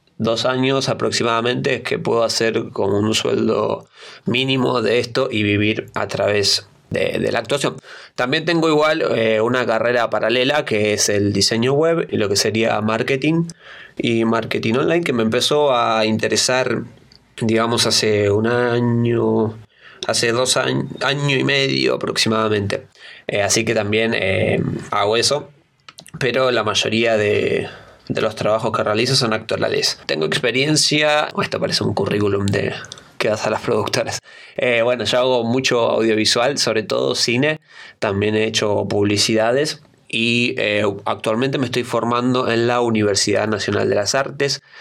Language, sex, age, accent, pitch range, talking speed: Spanish, male, 20-39, Argentinian, 105-125 Hz, 150 wpm